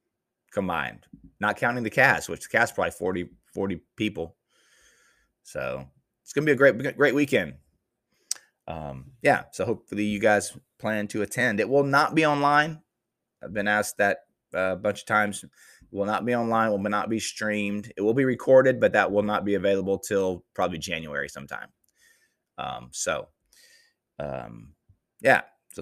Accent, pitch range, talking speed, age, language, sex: American, 90-125 Hz, 160 wpm, 20-39, English, male